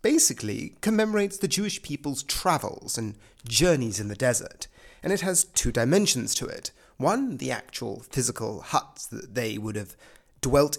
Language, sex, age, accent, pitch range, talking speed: English, male, 30-49, British, 120-195 Hz, 155 wpm